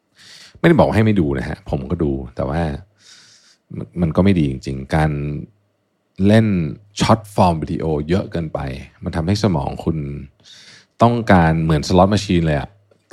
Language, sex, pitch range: Thai, male, 80-105 Hz